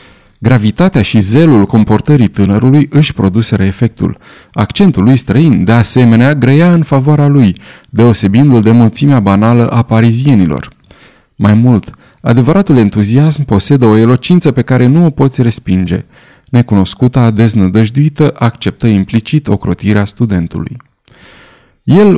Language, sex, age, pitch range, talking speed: Romanian, male, 30-49, 110-140 Hz, 120 wpm